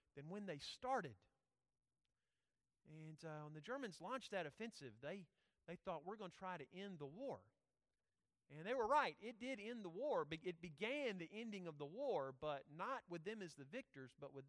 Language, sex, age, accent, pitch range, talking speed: English, male, 40-59, American, 140-215 Hz, 200 wpm